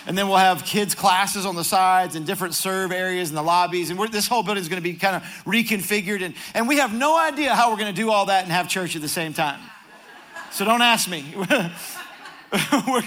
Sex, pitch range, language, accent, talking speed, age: male, 175-215 Hz, English, American, 245 wpm, 50-69